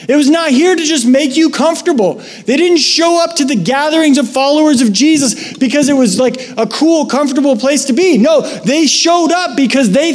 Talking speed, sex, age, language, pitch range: 215 wpm, male, 30-49, English, 160-220 Hz